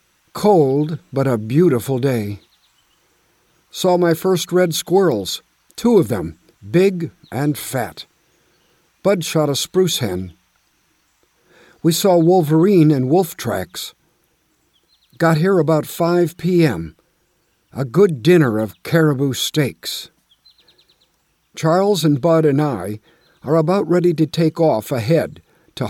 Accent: American